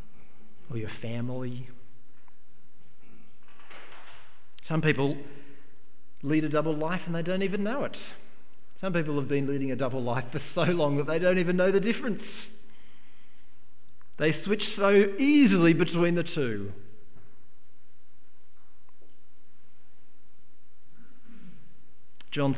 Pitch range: 105-170 Hz